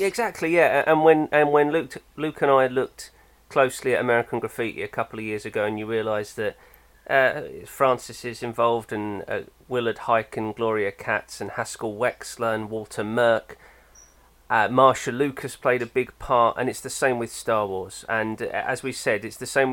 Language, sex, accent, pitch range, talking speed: English, male, British, 115-145 Hz, 195 wpm